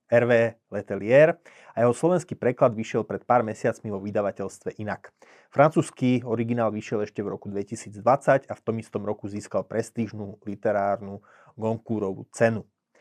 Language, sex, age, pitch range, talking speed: Slovak, male, 30-49, 110-130 Hz, 140 wpm